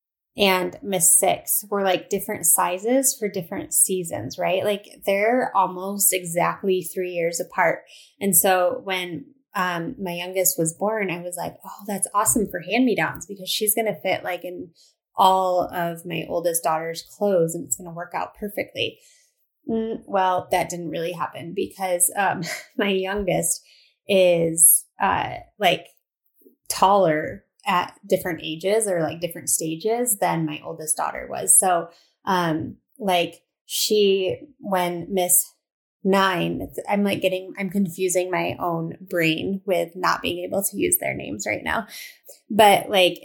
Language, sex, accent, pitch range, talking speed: English, female, American, 170-200 Hz, 145 wpm